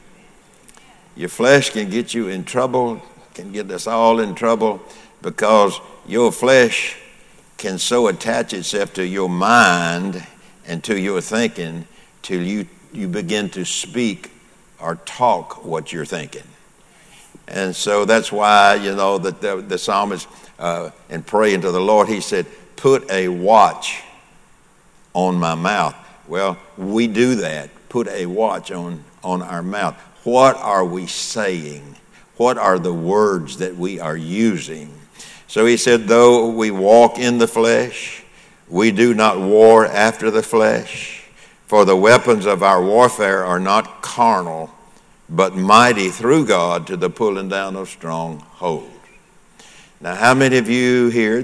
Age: 60-79